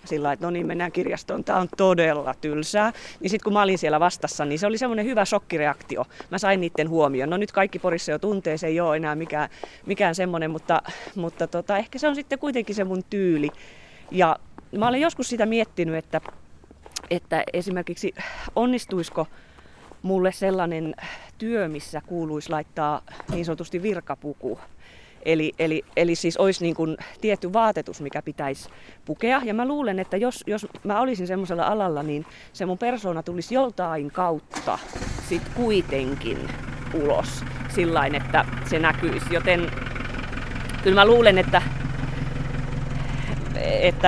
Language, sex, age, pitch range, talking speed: Finnish, female, 30-49, 150-200 Hz, 150 wpm